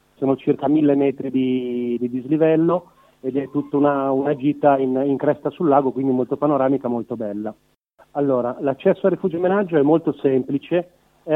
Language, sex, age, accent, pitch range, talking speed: Italian, male, 40-59, native, 140-160 Hz, 170 wpm